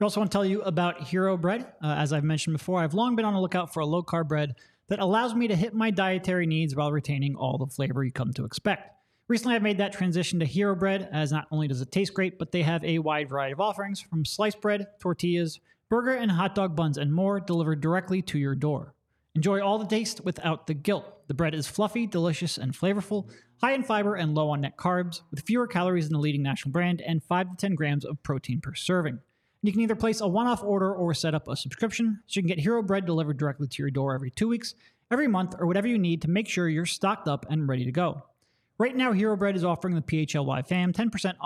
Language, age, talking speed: English, 30-49, 250 wpm